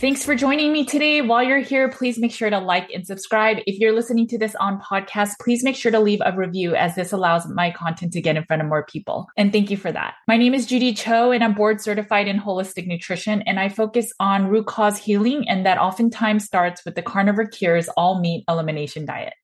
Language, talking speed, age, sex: English, 240 wpm, 20-39, female